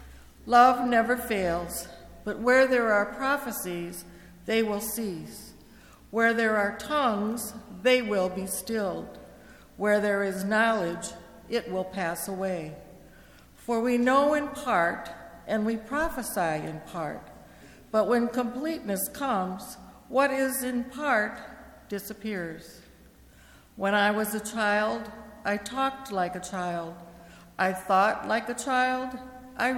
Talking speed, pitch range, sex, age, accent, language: 125 wpm, 185-240 Hz, female, 60-79, American, English